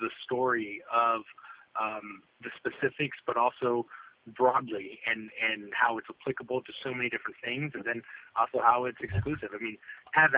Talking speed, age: 160 wpm, 30-49